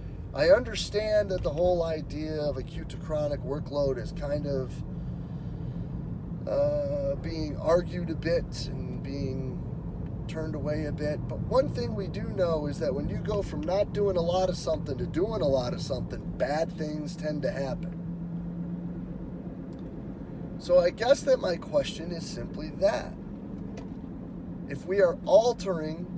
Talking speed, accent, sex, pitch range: 155 wpm, American, male, 145-180 Hz